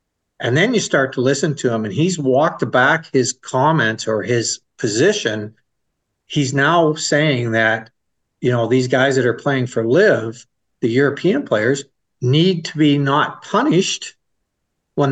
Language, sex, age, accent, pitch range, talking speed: English, male, 50-69, American, 120-155 Hz, 155 wpm